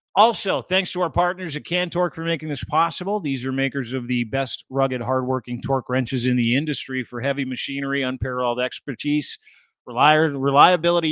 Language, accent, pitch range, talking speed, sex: English, American, 125-150 Hz, 160 wpm, male